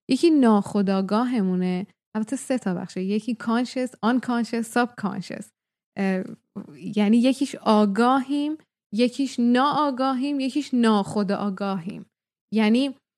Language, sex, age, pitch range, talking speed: Persian, female, 10-29, 200-265 Hz, 85 wpm